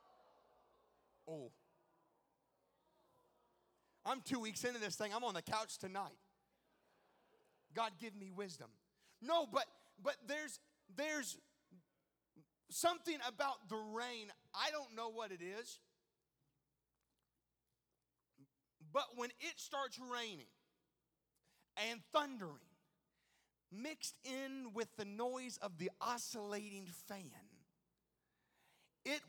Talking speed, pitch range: 100 wpm, 190-265 Hz